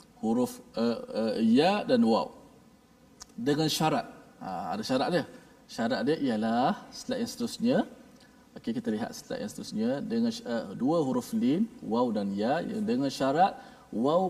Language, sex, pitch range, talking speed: Malayalam, male, 155-250 Hz, 145 wpm